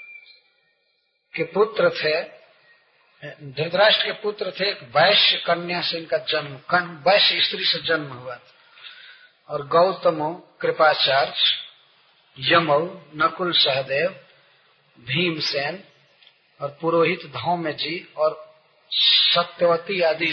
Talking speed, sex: 85 wpm, male